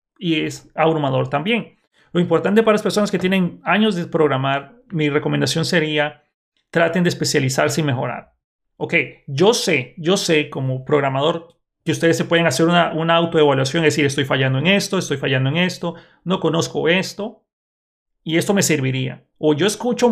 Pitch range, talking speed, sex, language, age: 145-180 Hz, 170 wpm, male, Spanish, 40-59